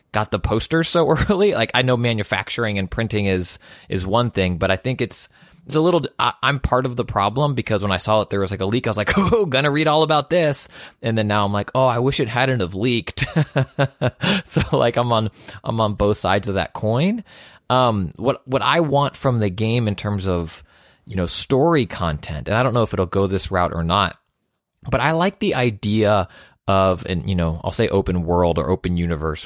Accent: American